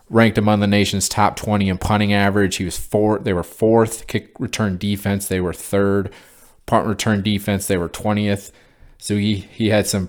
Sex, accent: male, American